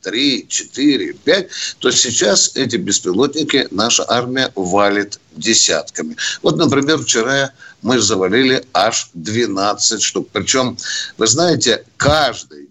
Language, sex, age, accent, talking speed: Russian, male, 60-79, native, 110 wpm